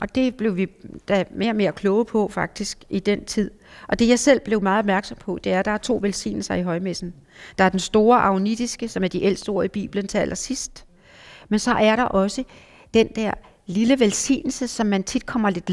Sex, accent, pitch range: female, native, 180-225 Hz